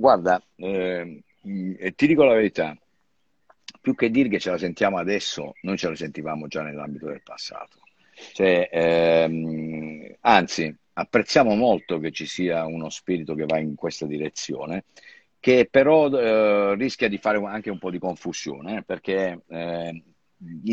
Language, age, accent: Italian, 50-69, native